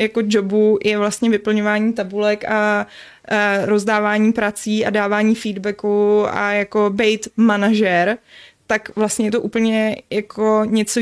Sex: female